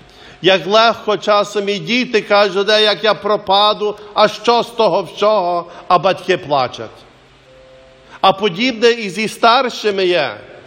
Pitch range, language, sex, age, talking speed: 195-235 Hz, English, male, 50-69, 135 wpm